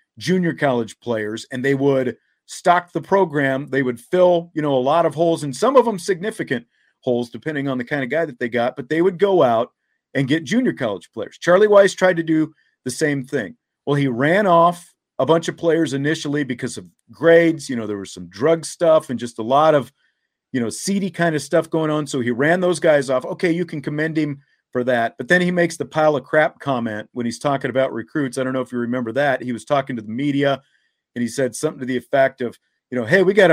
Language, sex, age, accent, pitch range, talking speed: English, male, 40-59, American, 125-165 Hz, 245 wpm